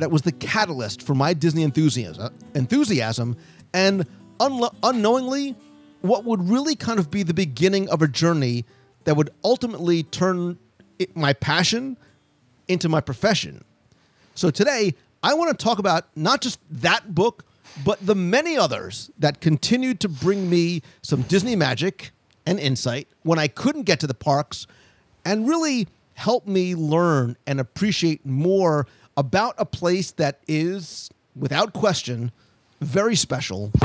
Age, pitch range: 40-59, 140-210 Hz